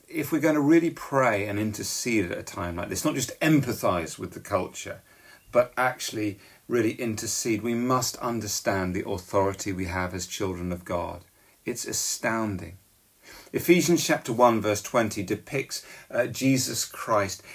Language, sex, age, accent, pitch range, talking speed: English, male, 40-59, British, 100-130 Hz, 155 wpm